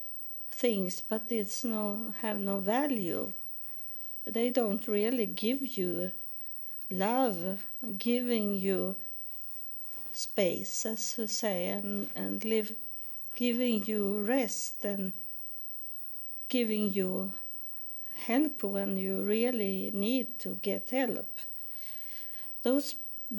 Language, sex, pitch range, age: English, female, 200-245 Hz, 50-69